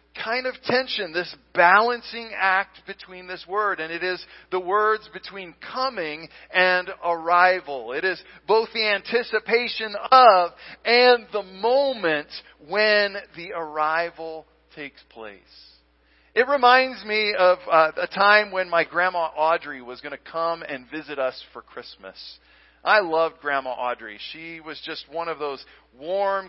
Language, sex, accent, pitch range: English, male, American, 145-195 Hz